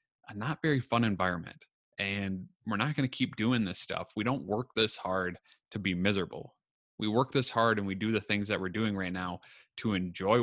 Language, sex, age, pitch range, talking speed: English, male, 30-49, 100-125 Hz, 215 wpm